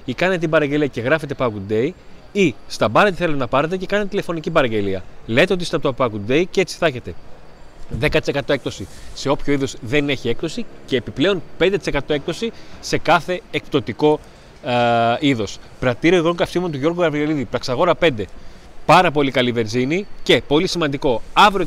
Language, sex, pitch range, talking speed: Greek, male, 130-175 Hz, 170 wpm